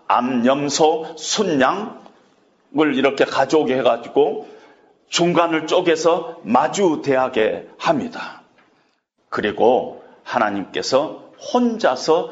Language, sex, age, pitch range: Korean, male, 40-59, 170-260 Hz